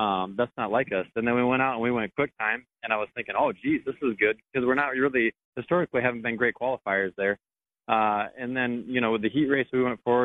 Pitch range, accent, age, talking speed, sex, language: 110-130 Hz, American, 30-49, 270 wpm, male, English